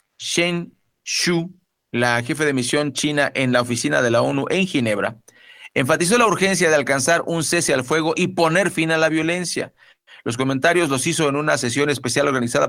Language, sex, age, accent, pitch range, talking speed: Spanish, male, 40-59, Mexican, 125-160 Hz, 185 wpm